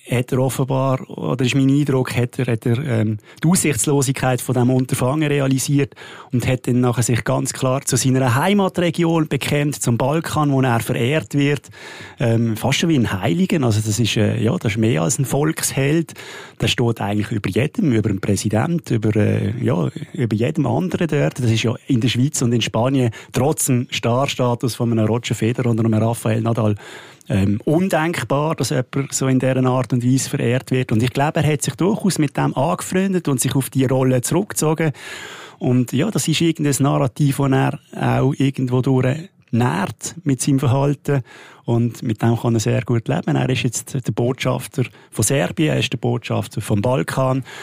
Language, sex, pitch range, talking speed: German, male, 120-145 Hz, 185 wpm